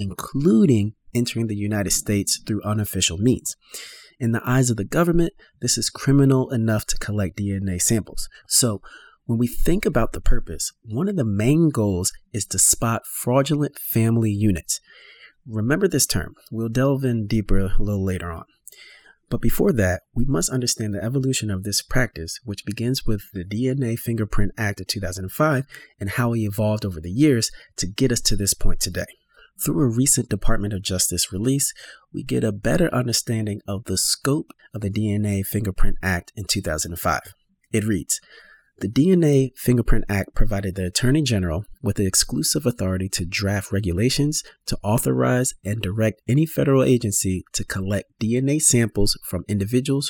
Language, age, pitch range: English, 30-49, 95-125 Hz